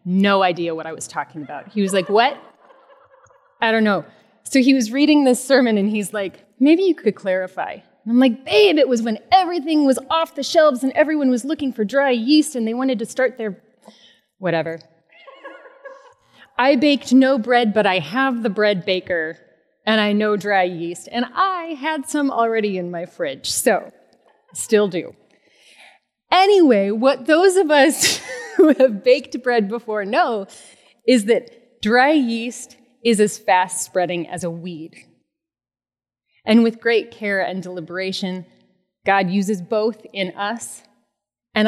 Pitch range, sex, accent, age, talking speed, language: 200-275 Hz, female, American, 30-49, 160 wpm, English